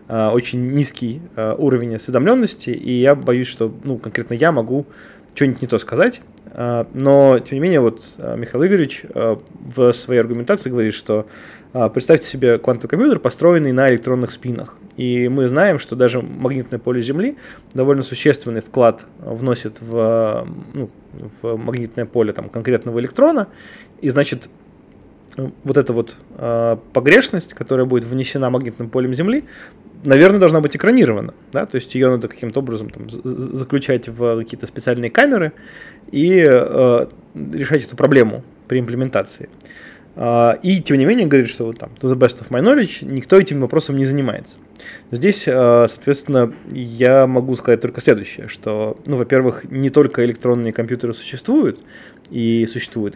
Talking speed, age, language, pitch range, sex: 140 wpm, 20-39, Russian, 115-140 Hz, male